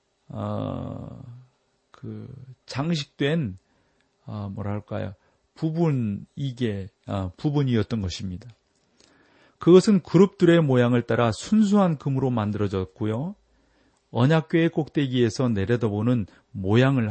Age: 40-59